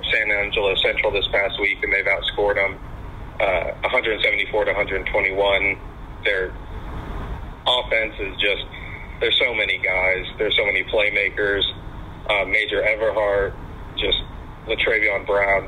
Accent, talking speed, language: American, 125 wpm, English